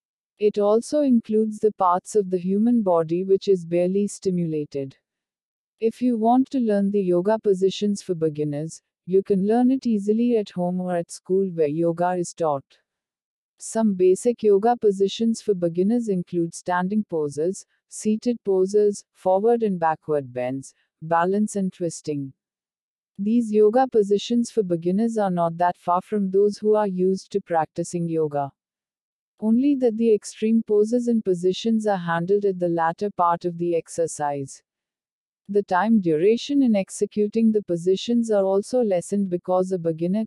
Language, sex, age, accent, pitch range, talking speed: Hindi, female, 50-69, native, 175-215 Hz, 150 wpm